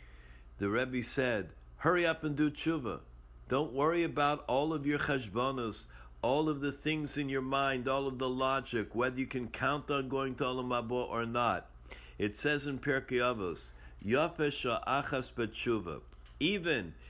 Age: 50-69